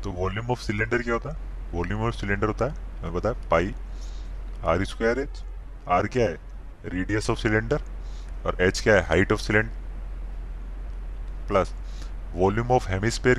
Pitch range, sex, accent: 85-110 Hz, male, native